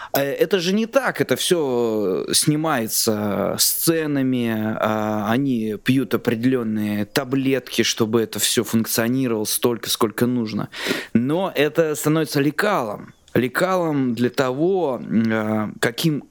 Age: 20-39